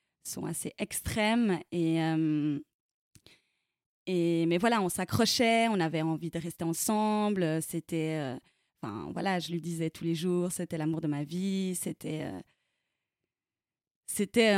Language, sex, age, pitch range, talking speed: French, female, 20-39, 165-200 Hz, 140 wpm